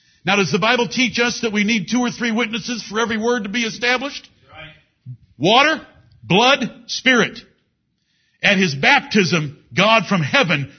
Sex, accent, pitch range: male, American, 175-235 Hz